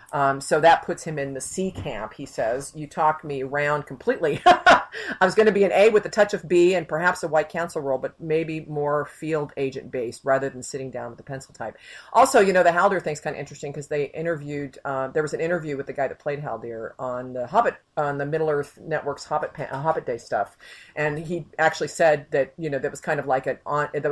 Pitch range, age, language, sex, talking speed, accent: 135-165 Hz, 40-59, English, female, 245 wpm, American